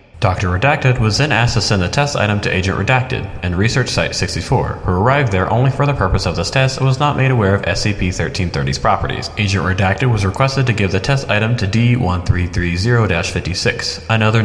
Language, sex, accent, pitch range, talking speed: English, male, American, 90-125 Hz, 195 wpm